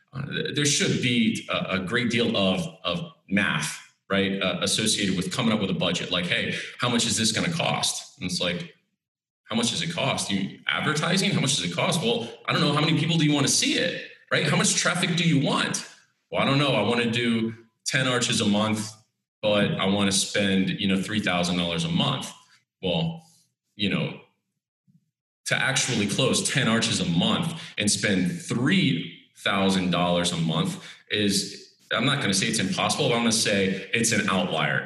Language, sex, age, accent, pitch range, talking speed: English, male, 30-49, American, 90-125 Hz, 205 wpm